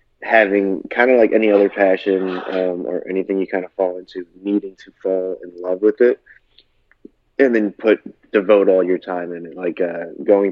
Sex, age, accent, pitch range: male, 20-39, American, 90-100 Hz